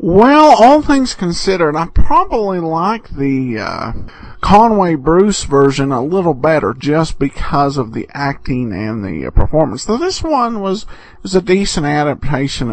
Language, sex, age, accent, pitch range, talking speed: English, male, 50-69, American, 150-225 Hz, 155 wpm